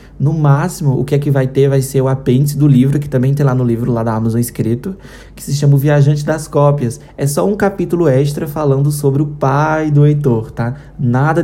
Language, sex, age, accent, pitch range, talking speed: Portuguese, male, 20-39, Brazilian, 125-145 Hz, 230 wpm